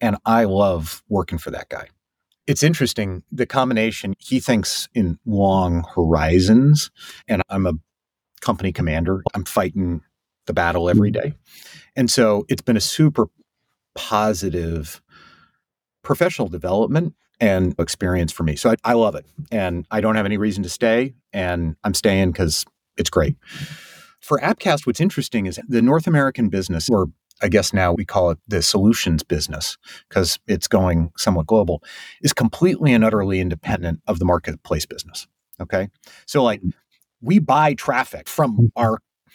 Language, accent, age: English, American, 30-49